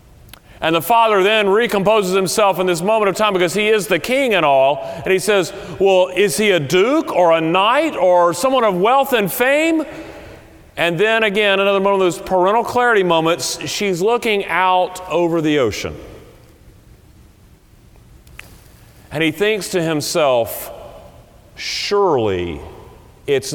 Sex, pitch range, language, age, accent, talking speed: male, 160-215 Hz, English, 40-59, American, 150 wpm